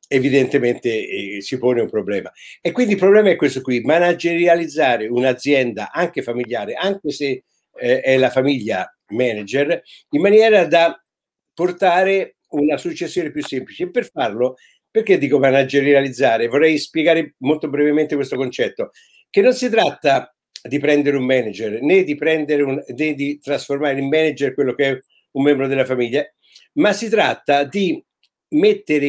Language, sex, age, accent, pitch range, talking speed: Italian, male, 60-79, native, 140-195 Hz, 140 wpm